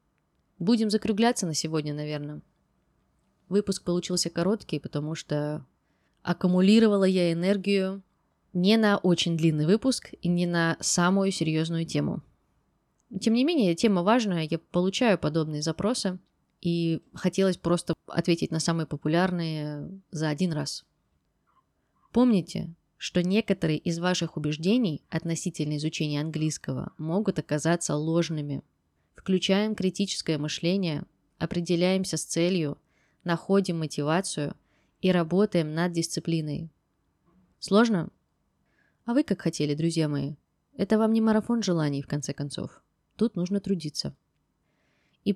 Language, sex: Russian, female